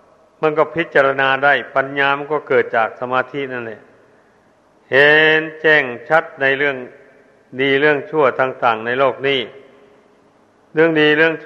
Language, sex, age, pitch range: Thai, male, 60-79, 135-155 Hz